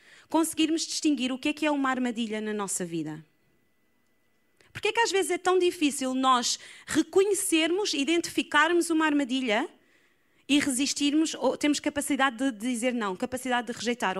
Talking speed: 150 wpm